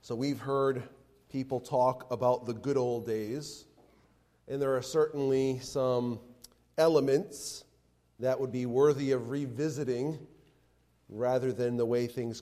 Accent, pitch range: American, 110-135 Hz